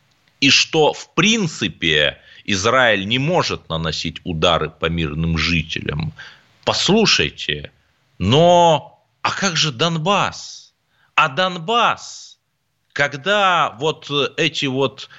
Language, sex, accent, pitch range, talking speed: Russian, male, native, 105-165 Hz, 95 wpm